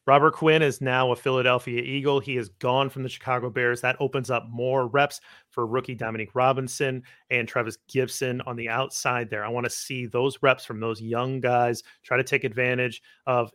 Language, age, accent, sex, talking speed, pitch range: English, 30-49, American, male, 200 wpm, 120-140 Hz